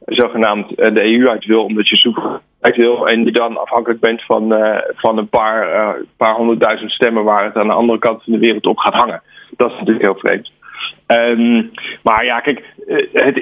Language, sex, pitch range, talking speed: English, male, 110-125 Hz, 205 wpm